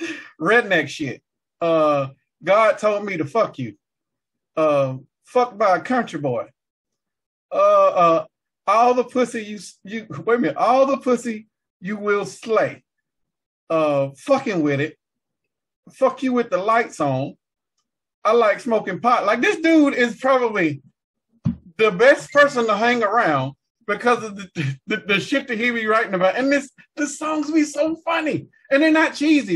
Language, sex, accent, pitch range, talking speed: English, male, American, 165-245 Hz, 160 wpm